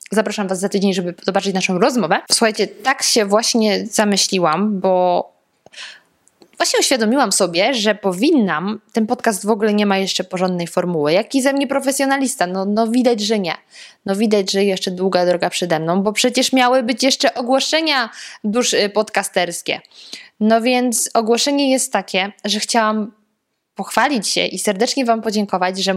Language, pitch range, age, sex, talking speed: Polish, 195-240 Hz, 20-39, female, 155 wpm